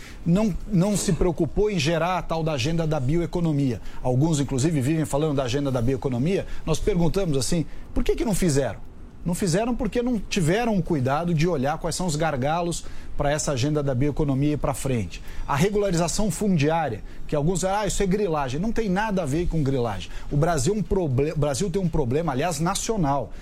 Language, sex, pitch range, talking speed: English, male, 140-175 Hz, 190 wpm